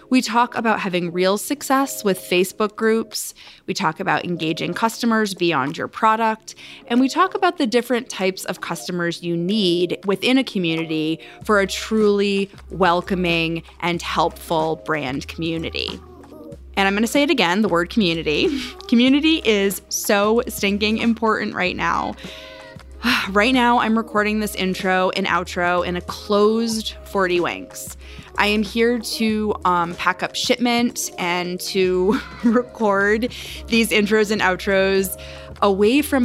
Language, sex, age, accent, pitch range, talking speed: English, female, 20-39, American, 175-230 Hz, 140 wpm